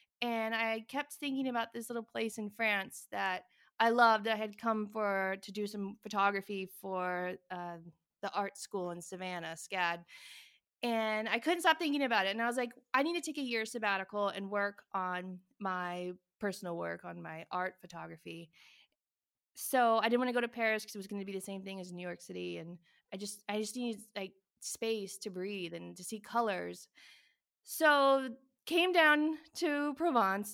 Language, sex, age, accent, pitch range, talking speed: English, female, 20-39, American, 190-235 Hz, 190 wpm